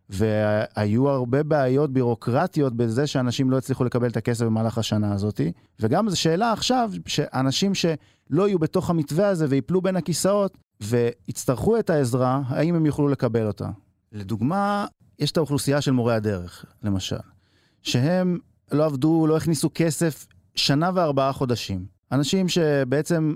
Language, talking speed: Hebrew, 140 wpm